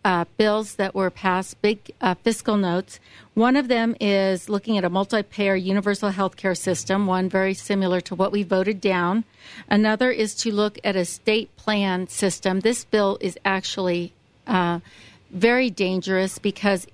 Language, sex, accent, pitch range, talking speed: English, female, American, 185-210 Hz, 165 wpm